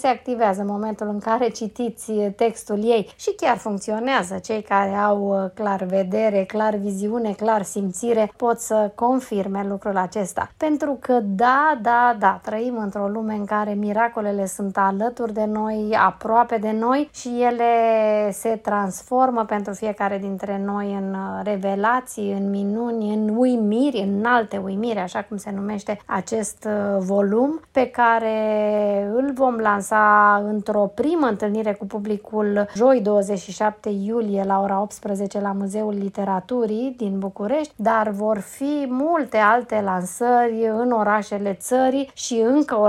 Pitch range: 200-230 Hz